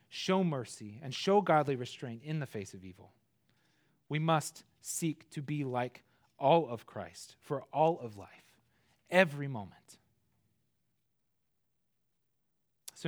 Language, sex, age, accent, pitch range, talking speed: English, male, 30-49, American, 115-155 Hz, 125 wpm